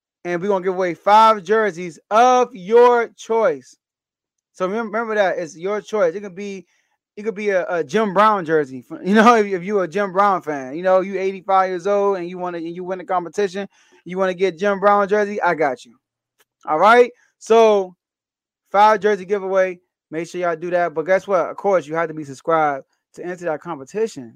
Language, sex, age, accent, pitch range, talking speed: English, male, 20-39, American, 180-220 Hz, 210 wpm